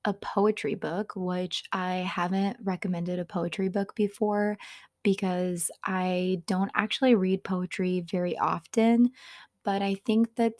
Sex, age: female, 20-39